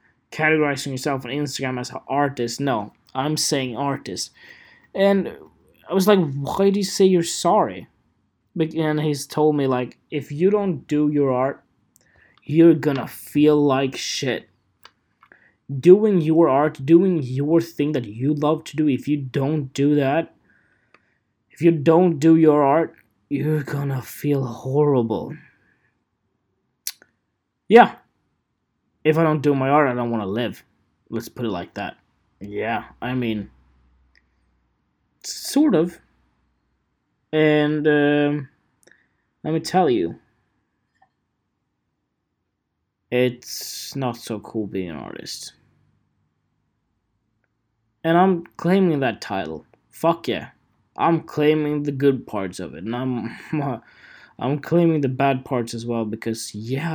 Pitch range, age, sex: 125-155 Hz, 20-39, male